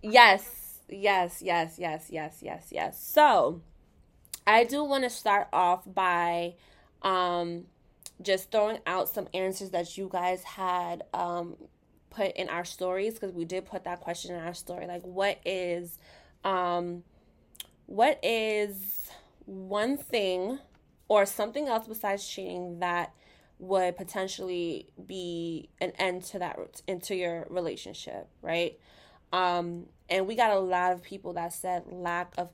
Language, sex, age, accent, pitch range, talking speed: English, female, 20-39, American, 175-195 Hz, 140 wpm